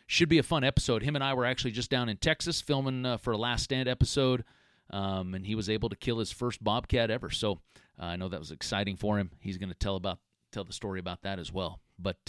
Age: 40-59